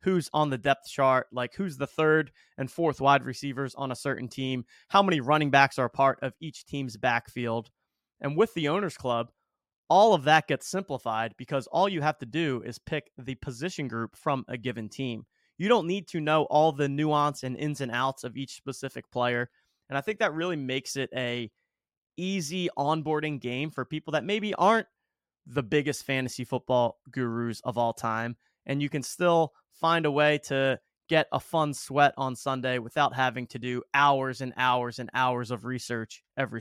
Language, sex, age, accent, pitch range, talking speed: English, male, 20-39, American, 125-160 Hz, 195 wpm